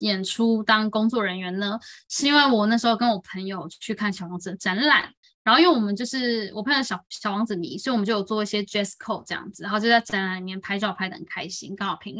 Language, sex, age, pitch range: Chinese, female, 10-29, 200-260 Hz